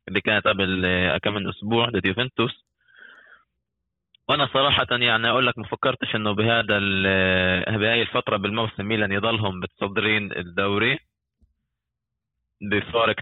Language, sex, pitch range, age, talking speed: Arabic, male, 95-115 Hz, 20-39, 110 wpm